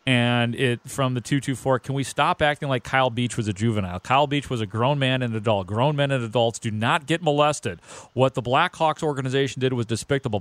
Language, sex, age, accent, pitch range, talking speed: English, male, 40-59, American, 120-155 Hz, 230 wpm